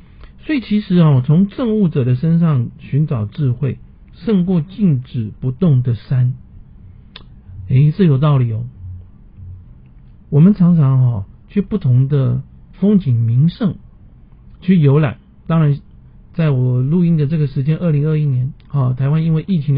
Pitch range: 125-185 Hz